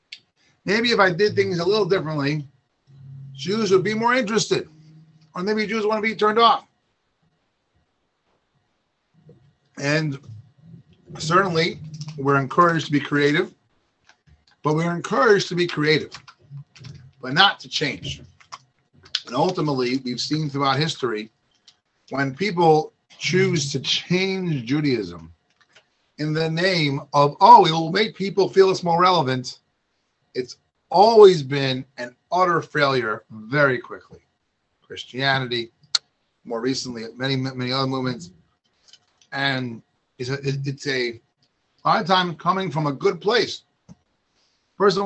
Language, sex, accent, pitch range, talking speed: English, male, American, 135-185 Hz, 125 wpm